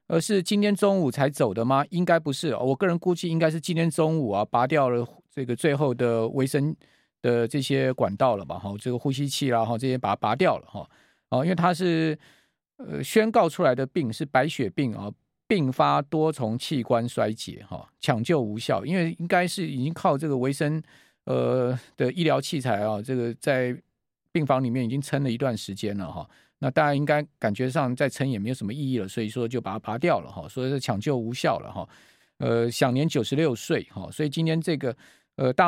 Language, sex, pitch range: Chinese, male, 120-160 Hz